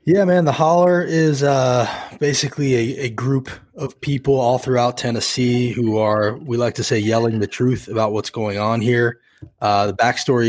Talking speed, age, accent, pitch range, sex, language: 185 wpm, 20-39, American, 105-120 Hz, male, English